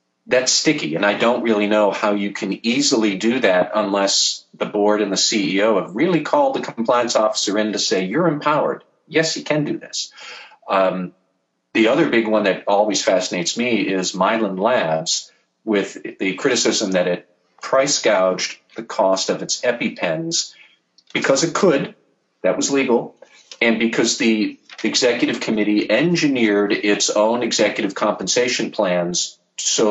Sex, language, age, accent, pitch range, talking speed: male, English, 40-59, American, 95-125 Hz, 155 wpm